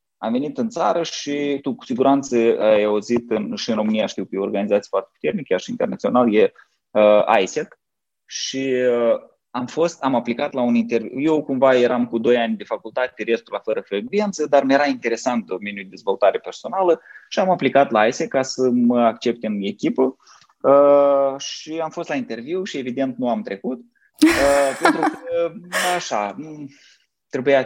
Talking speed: 175 wpm